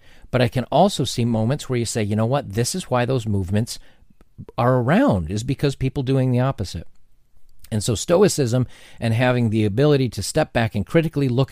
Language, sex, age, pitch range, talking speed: English, male, 40-59, 105-145 Hz, 200 wpm